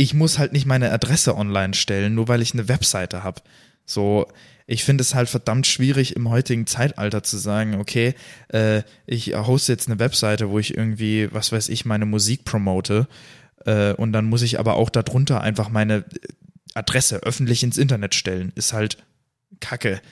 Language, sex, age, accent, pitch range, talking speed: German, male, 20-39, German, 105-125 Hz, 180 wpm